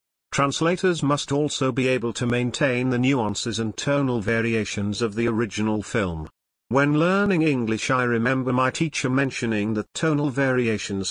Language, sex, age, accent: English, male, 50-69, British